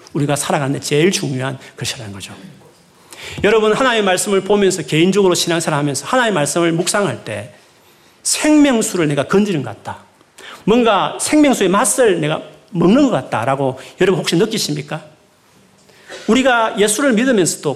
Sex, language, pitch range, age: male, Korean, 140-210 Hz, 40-59